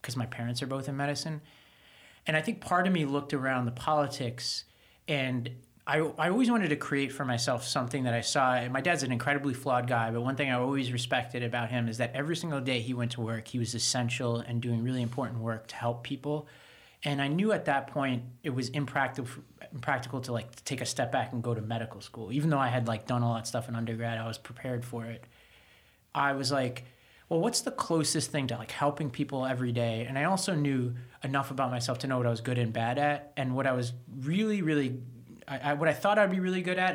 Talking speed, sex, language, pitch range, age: 240 wpm, male, English, 120-145 Hz, 30-49